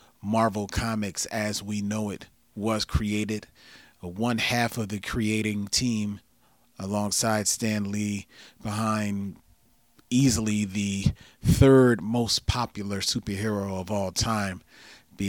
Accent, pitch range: American, 100-115 Hz